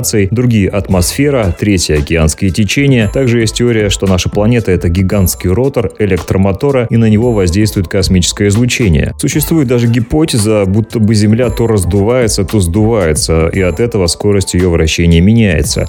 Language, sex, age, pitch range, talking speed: Russian, male, 30-49, 90-120 Hz, 145 wpm